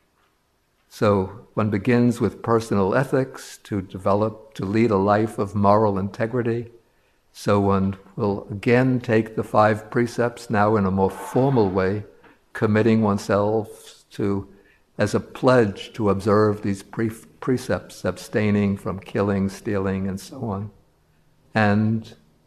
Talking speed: 125 wpm